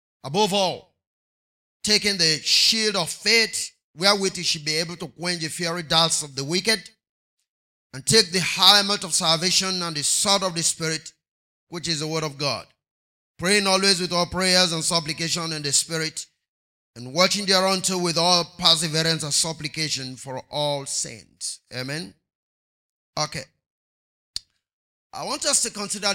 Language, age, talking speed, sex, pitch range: English, 30-49, 155 wpm, male, 135-175 Hz